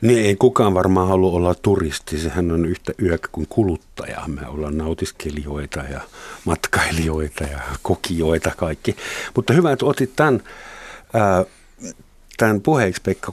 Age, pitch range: 50-69, 85-100 Hz